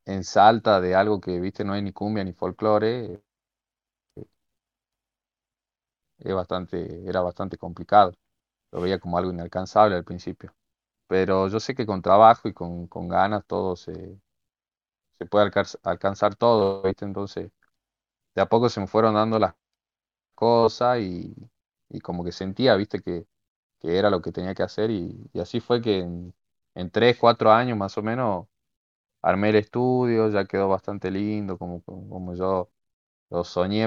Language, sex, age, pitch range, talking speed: Spanish, male, 20-39, 90-105 Hz, 160 wpm